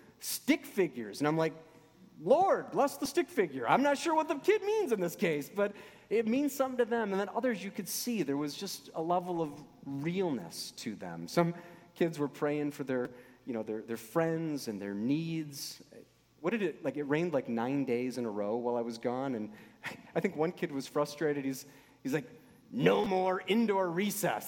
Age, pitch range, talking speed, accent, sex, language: 30-49, 125-190 Hz, 210 wpm, American, male, English